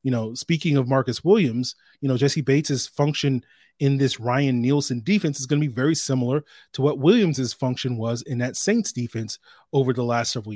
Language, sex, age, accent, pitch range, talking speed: English, male, 30-49, American, 125-150 Hz, 200 wpm